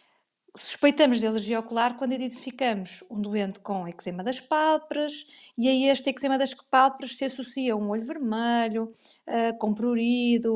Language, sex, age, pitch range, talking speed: Portuguese, female, 20-39, 205-250 Hz, 150 wpm